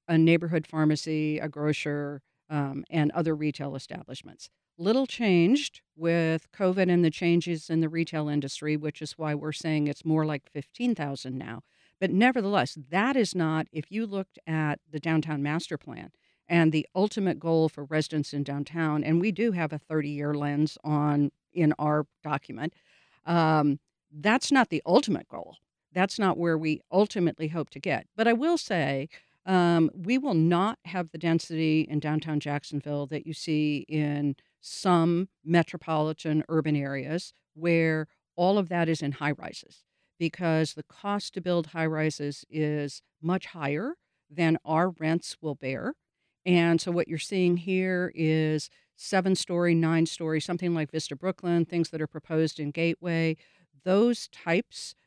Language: English